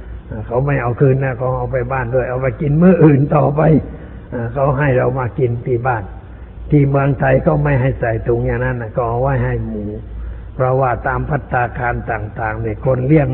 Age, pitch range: 60-79, 120-145 Hz